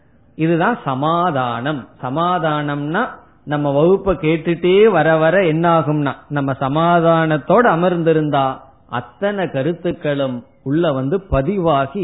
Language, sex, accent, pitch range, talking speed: Tamil, male, native, 140-185 Hz, 75 wpm